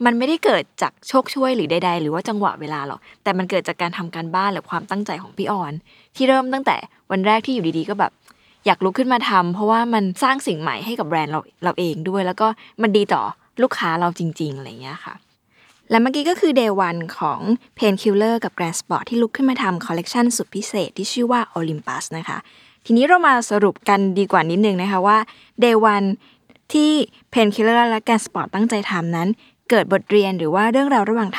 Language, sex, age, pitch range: Thai, female, 20-39, 180-235 Hz